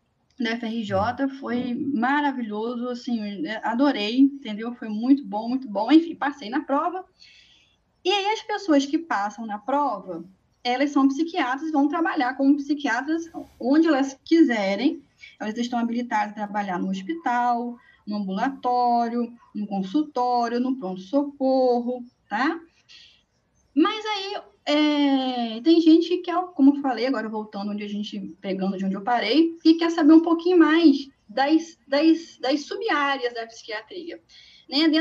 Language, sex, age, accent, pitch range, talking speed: Portuguese, female, 10-29, Brazilian, 225-295 Hz, 140 wpm